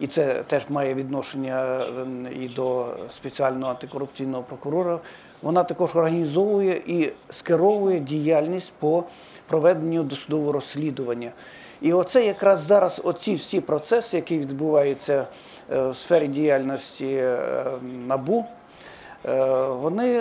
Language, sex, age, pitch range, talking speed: English, male, 50-69, 140-190 Hz, 100 wpm